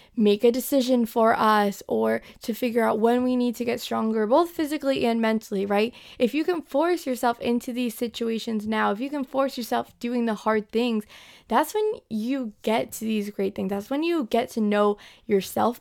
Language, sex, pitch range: English, female, 220-270 Hz